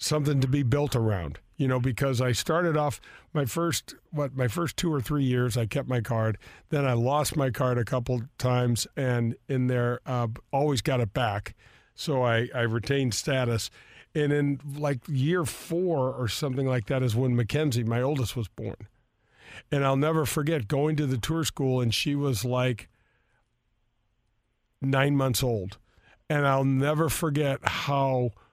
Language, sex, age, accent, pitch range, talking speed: English, male, 50-69, American, 120-145 Hz, 175 wpm